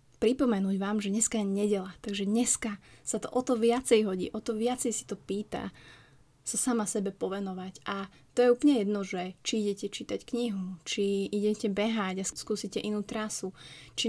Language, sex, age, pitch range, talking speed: Slovak, female, 20-39, 200-230 Hz, 175 wpm